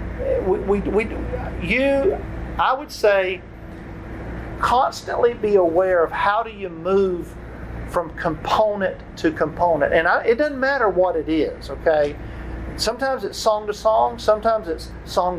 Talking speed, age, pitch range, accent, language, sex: 140 wpm, 50-69, 160-220 Hz, American, English, male